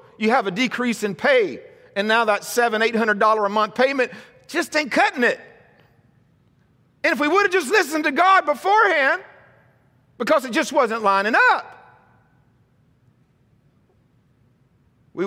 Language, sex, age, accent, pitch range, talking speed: English, male, 50-69, American, 220-330 Hz, 135 wpm